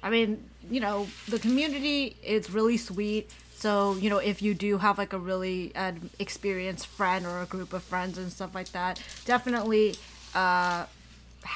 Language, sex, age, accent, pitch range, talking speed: English, female, 20-39, American, 185-220 Hz, 165 wpm